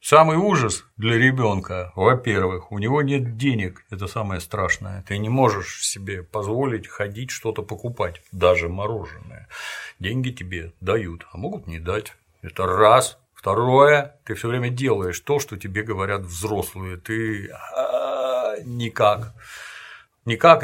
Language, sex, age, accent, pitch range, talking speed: Russian, male, 50-69, native, 100-125 Hz, 130 wpm